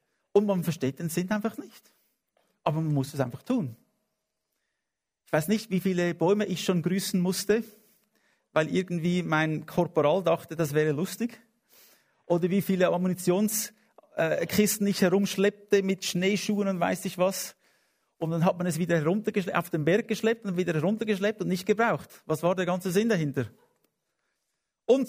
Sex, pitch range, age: male, 160-210 Hz, 50-69